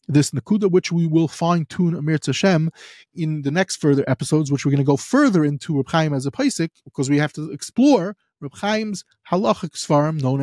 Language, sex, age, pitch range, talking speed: English, male, 30-49, 140-185 Hz, 195 wpm